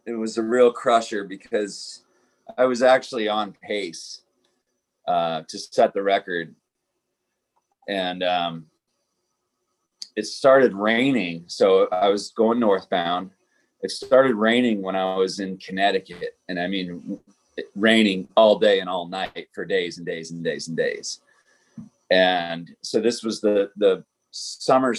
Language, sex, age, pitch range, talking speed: English, male, 40-59, 100-145 Hz, 140 wpm